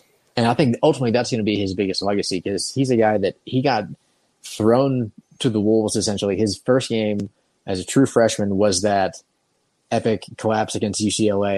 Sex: male